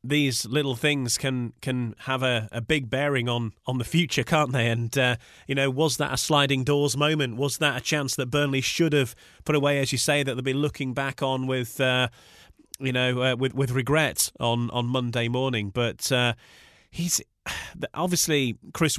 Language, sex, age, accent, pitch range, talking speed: English, male, 30-49, British, 115-140 Hz, 195 wpm